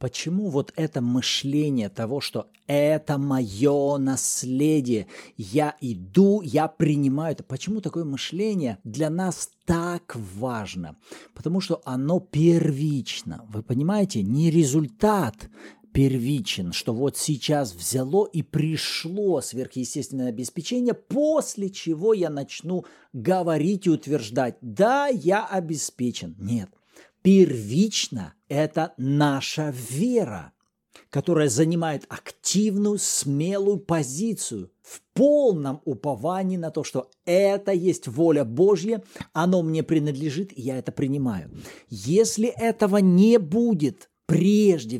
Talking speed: 105 wpm